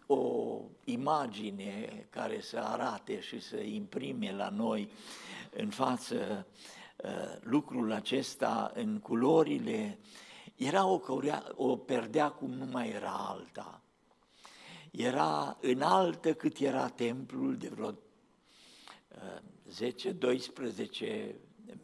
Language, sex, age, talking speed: Romanian, male, 60-79, 90 wpm